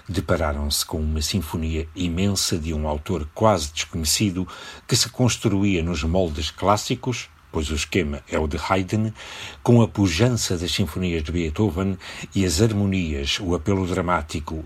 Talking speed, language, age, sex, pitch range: 145 wpm, Portuguese, 60-79, male, 80-100 Hz